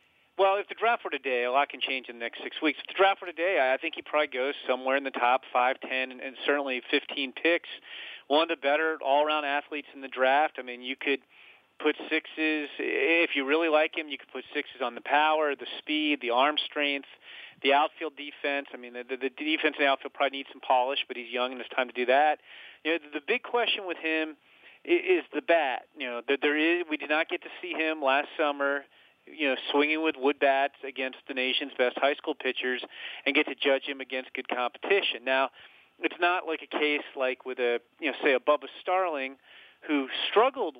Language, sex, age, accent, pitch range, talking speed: English, male, 40-59, American, 130-160 Hz, 220 wpm